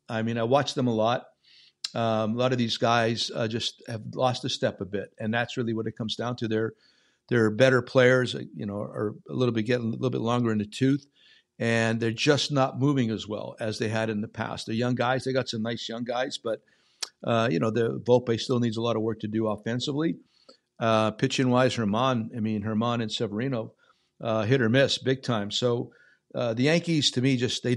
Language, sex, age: English, male, 50-69